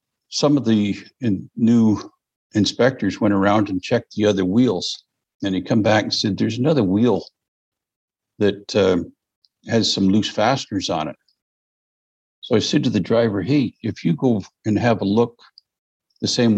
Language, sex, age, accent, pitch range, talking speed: English, male, 60-79, American, 100-120 Hz, 165 wpm